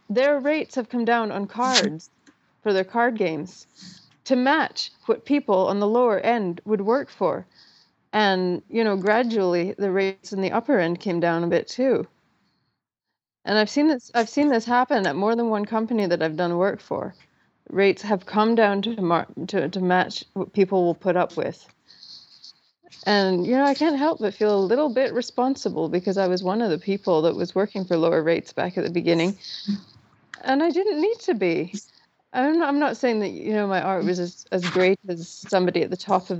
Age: 30-49